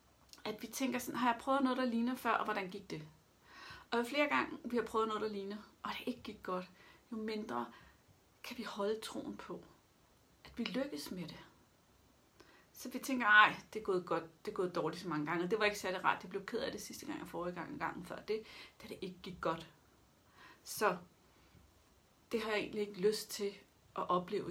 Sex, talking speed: female, 215 wpm